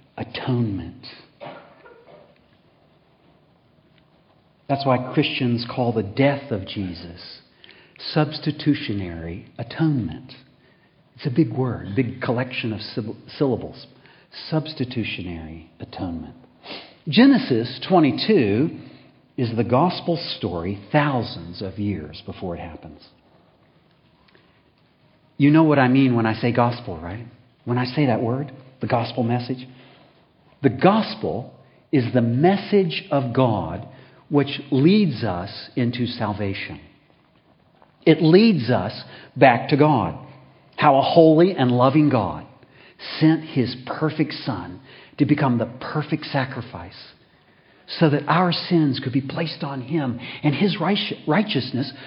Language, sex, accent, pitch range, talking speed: English, male, American, 115-155 Hz, 110 wpm